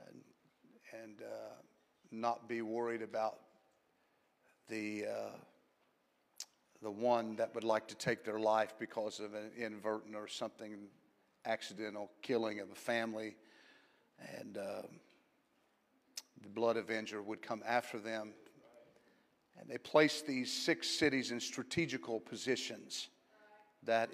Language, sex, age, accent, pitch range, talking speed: English, male, 50-69, American, 115-145 Hz, 115 wpm